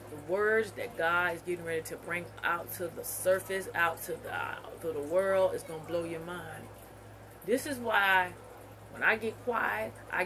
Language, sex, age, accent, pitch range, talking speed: English, female, 30-49, American, 130-195 Hz, 195 wpm